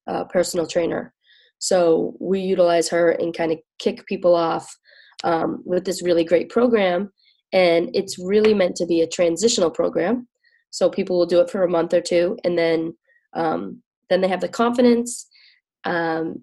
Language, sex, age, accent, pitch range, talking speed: English, female, 20-39, American, 170-210 Hz, 170 wpm